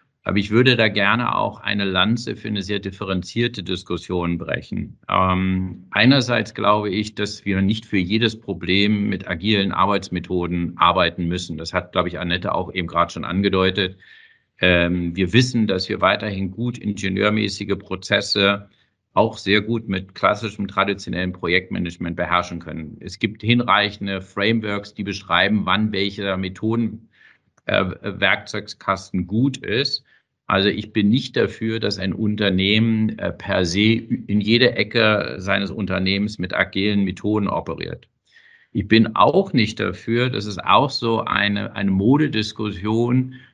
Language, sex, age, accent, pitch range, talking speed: German, male, 50-69, German, 95-110 Hz, 140 wpm